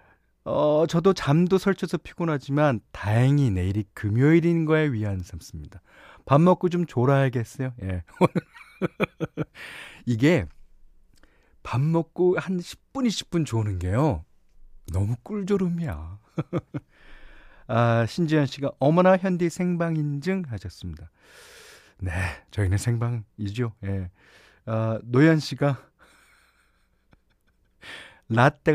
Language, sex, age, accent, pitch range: Korean, male, 40-59, native, 105-165 Hz